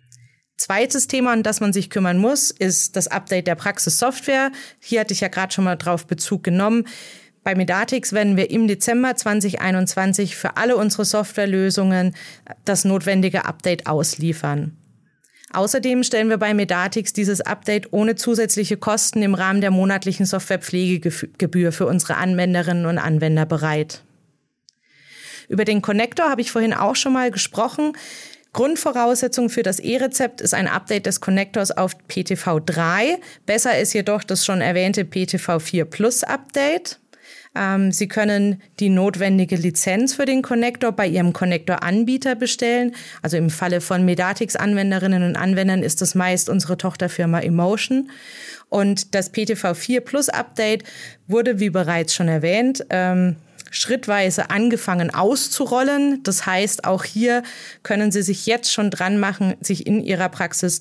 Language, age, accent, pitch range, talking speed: German, 30-49, German, 180-225 Hz, 145 wpm